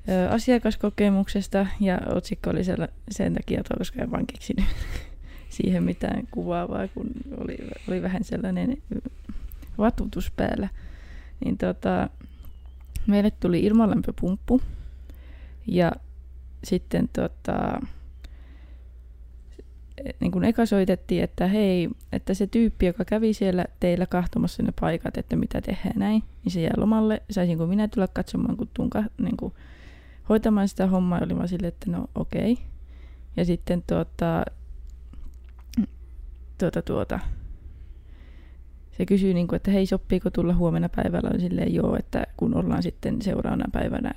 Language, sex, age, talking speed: Finnish, female, 20-39, 120 wpm